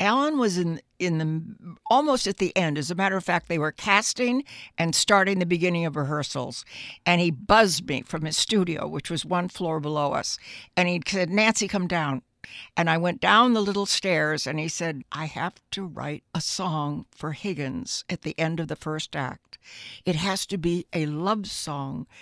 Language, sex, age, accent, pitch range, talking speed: English, female, 60-79, American, 140-185 Hz, 200 wpm